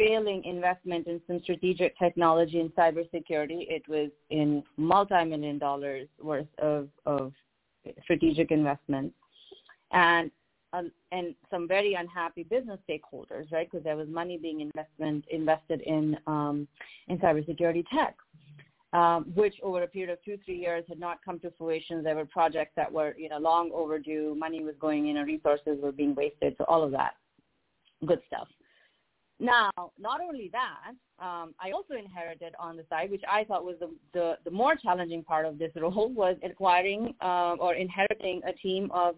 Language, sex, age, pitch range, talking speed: English, female, 30-49, 160-190 Hz, 165 wpm